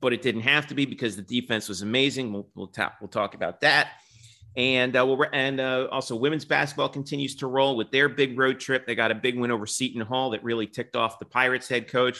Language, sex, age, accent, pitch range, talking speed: English, male, 40-59, American, 110-140 Hz, 250 wpm